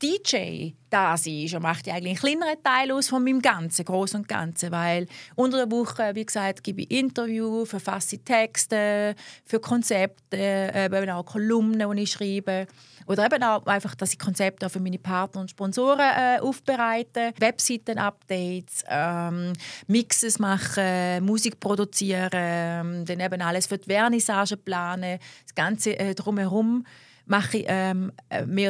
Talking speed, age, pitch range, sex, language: 150 wpm, 30-49, 190-235 Hz, female, German